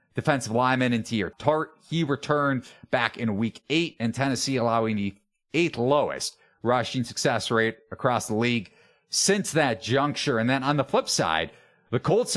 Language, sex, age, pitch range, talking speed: English, male, 30-49, 110-140 Hz, 165 wpm